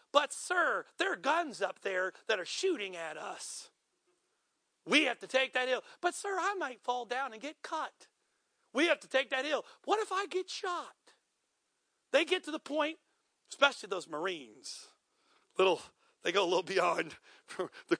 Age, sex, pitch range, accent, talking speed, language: 50-69, male, 235-340 Hz, American, 175 wpm, English